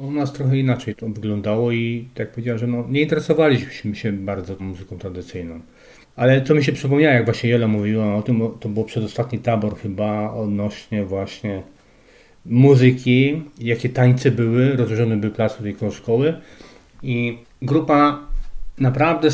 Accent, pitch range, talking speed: native, 115-140 Hz, 160 wpm